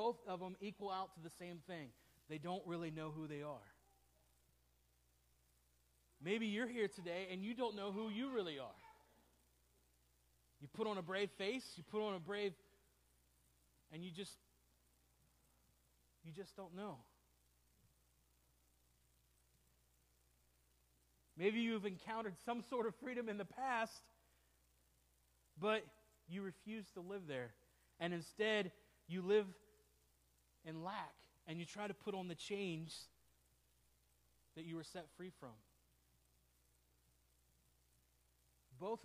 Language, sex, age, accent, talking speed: English, male, 40-59, American, 130 wpm